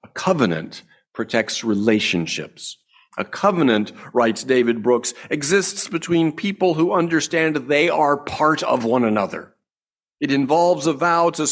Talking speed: 125 wpm